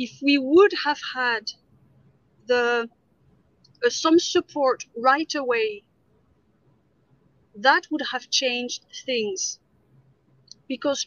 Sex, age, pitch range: female, 40-59, 230-275 Hz